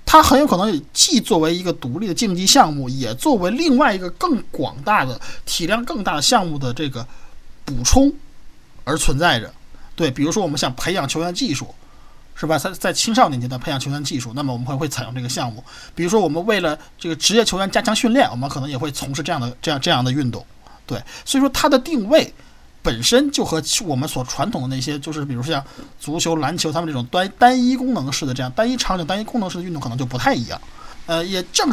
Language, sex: Chinese, male